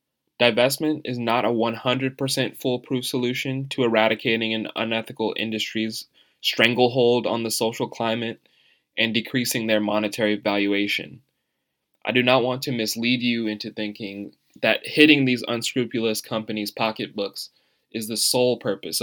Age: 20-39